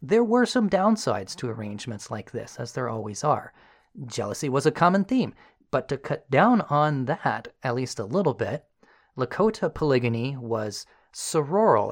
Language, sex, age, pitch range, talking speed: English, male, 30-49, 115-150 Hz, 160 wpm